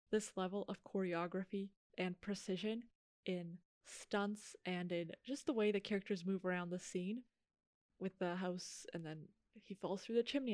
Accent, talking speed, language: American, 165 wpm, English